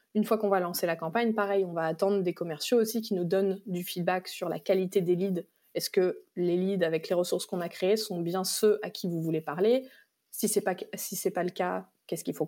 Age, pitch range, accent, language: 20-39, 175-220 Hz, French, French